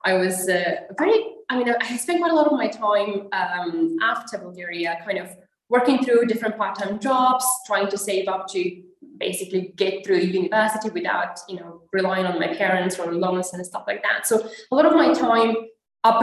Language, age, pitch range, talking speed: English, 20-39, 190-250 Hz, 200 wpm